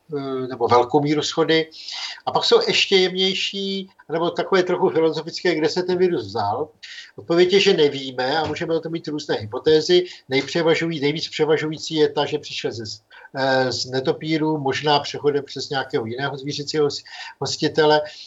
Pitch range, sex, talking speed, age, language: 130-160 Hz, male, 145 wpm, 50-69, Czech